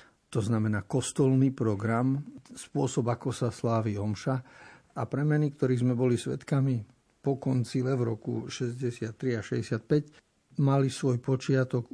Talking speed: 125 wpm